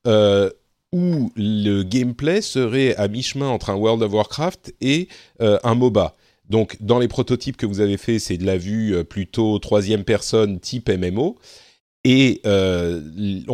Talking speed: 155 wpm